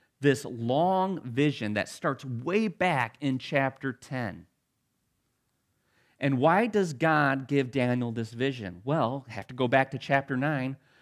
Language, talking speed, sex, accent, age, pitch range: English, 145 wpm, male, American, 40-59, 130-175 Hz